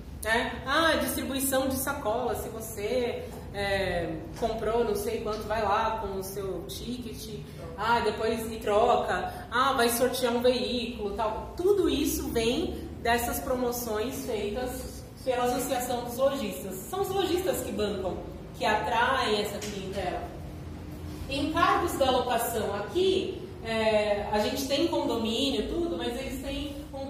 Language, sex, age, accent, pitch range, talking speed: Portuguese, female, 30-49, Brazilian, 215-275 Hz, 140 wpm